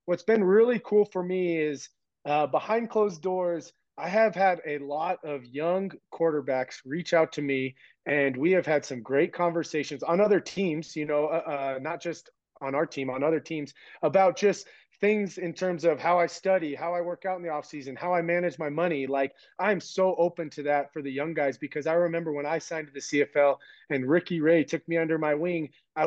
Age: 30-49